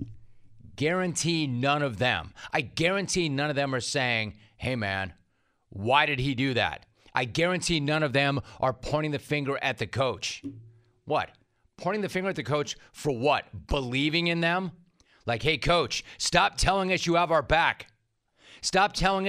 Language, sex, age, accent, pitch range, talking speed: English, male, 40-59, American, 120-165 Hz, 170 wpm